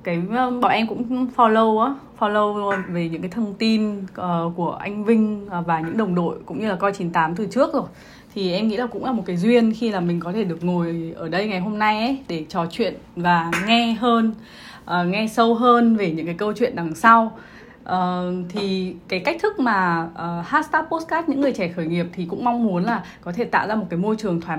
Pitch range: 180-245 Hz